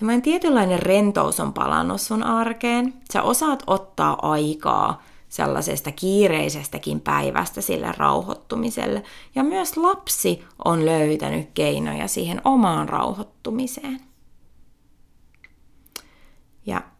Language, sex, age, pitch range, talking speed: Finnish, female, 30-49, 150-240 Hz, 90 wpm